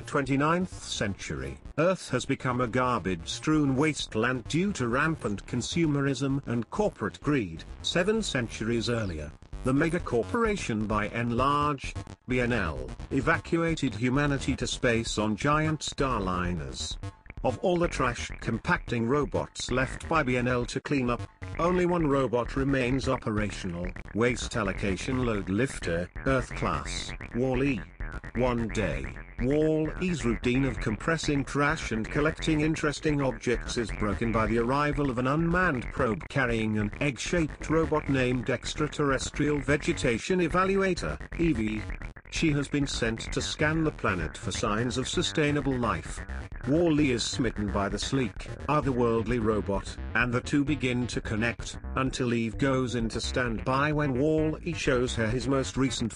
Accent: British